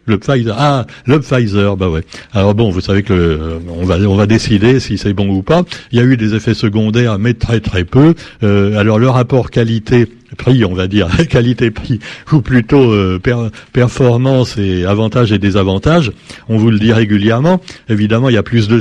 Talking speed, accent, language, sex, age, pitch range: 200 wpm, French, French, male, 60-79, 110-140 Hz